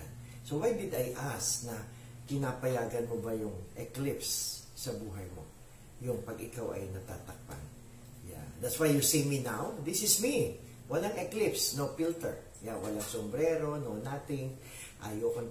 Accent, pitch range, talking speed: Filipino, 110-125 Hz, 150 wpm